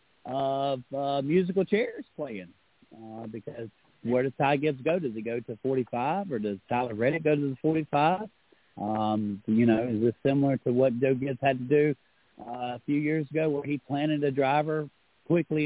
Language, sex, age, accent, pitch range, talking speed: English, male, 40-59, American, 125-150 Hz, 190 wpm